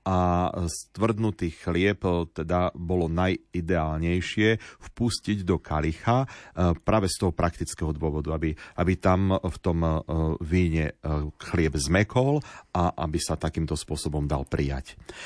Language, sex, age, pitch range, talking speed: Slovak, male, 40-59, 85-105 Hz, 115 wpm